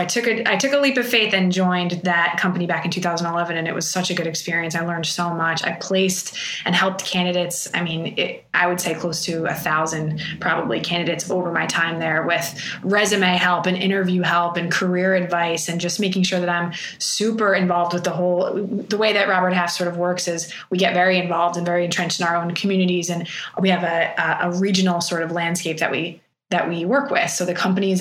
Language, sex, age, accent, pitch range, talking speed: English, female, 20-39, American, 170-190 Hz, 230 wpm